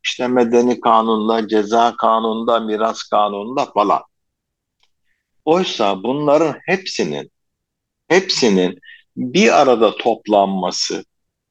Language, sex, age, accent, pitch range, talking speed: Turkish, male, 50-69, native, 110-145 Hz, 80 wpm